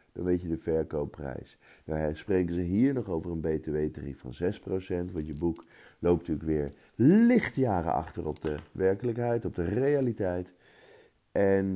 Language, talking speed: Dutch, 155 wpm